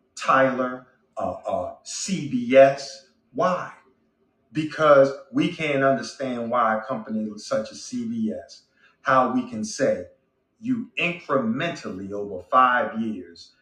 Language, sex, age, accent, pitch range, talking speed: English, male, 40-59, American, 115-140 Hz, 110 wpm